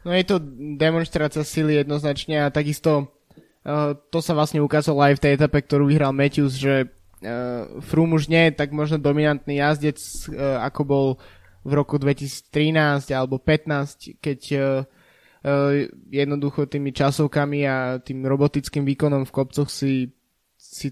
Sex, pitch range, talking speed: male, 140-150 Hz, 130 wpm